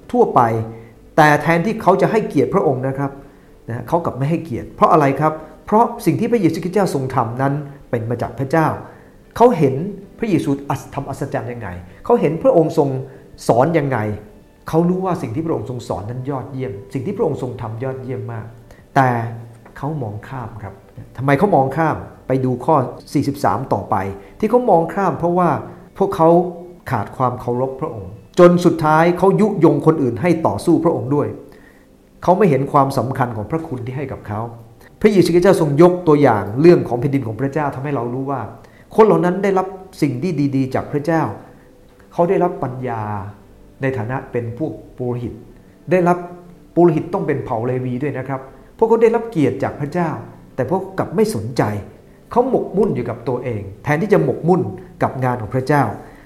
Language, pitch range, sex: English, 120-165 Hz, male